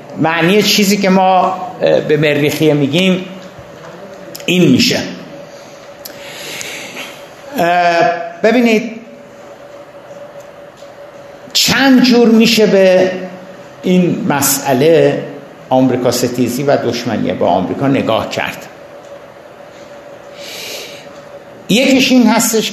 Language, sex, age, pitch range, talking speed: Persian, male, 60-79, 140-190 Hz, 70 wpm